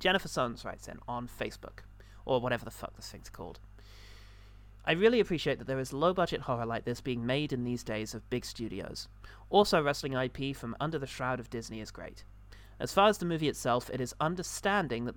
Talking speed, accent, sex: 205 wpm, British, male